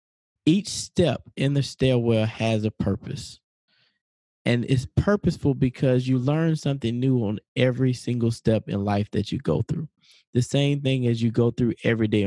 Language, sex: English, male